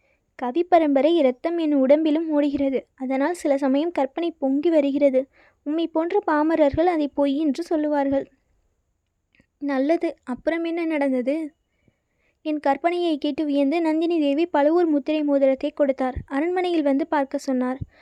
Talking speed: 125 wpm